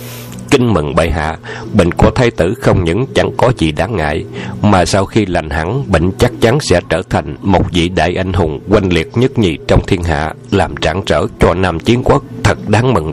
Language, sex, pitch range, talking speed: Vietnamese, male, 85-110 Hz, 220 wpm